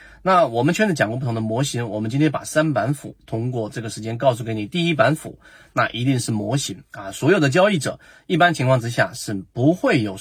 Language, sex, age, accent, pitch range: Chinese, male, 30-49, native, 110-155 Hz